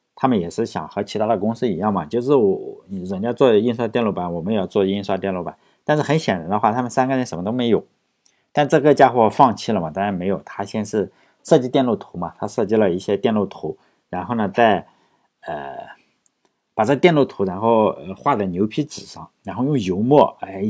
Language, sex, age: Chinese, male, 50-69